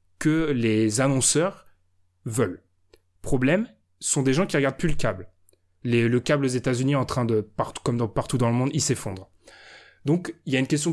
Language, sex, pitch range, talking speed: French, male, 115-155 Hz, 215 wpm